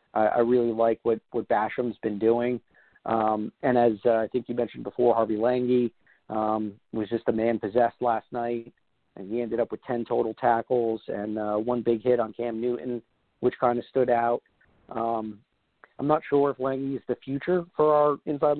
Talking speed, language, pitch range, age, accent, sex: 195 wpm, English, 115-130 Hz, 40-59, American, male